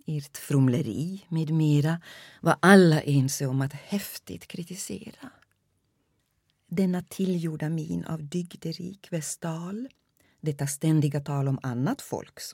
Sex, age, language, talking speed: female, 40-59, Swedish, 105 wpm